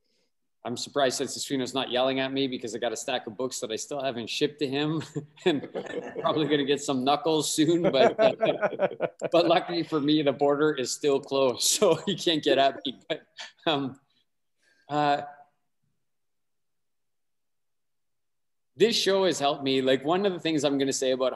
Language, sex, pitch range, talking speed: English, male, 125-150 Hz, 185 wpm